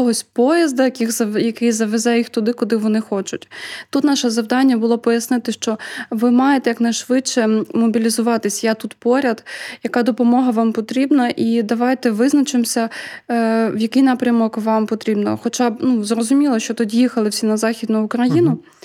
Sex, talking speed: female, 140 wpm